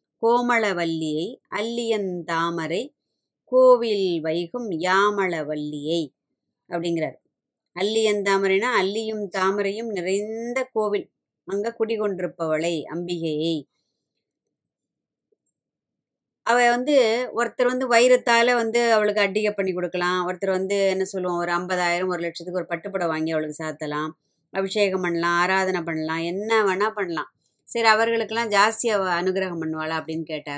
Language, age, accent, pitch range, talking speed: Tamil, 20-39, native, 170-215 Hz, 105 wpm